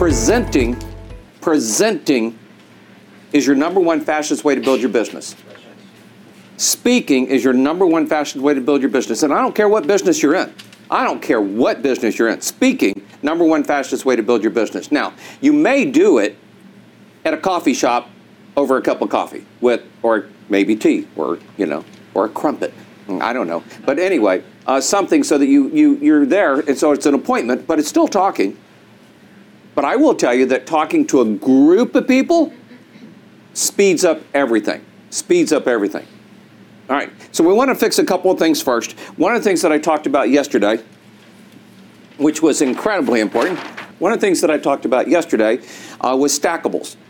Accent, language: American, English